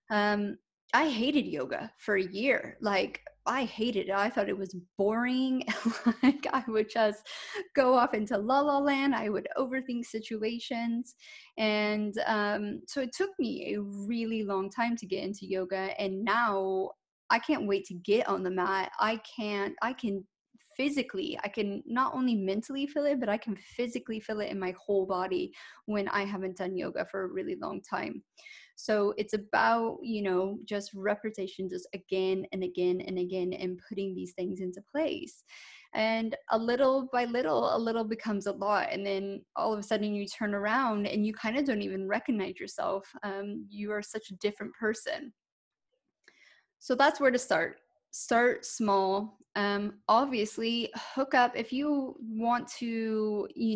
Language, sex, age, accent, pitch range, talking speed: English, female, 20-39, American, 200-245 Hz, 175 wpm